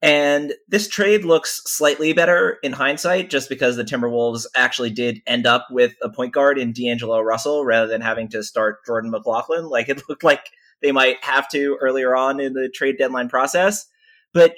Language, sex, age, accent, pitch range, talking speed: English, male, 30-49, American, 110-145 Hz, 190 wpm